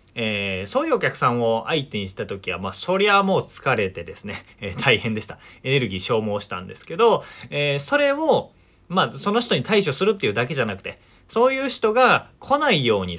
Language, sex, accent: Japanese, male, native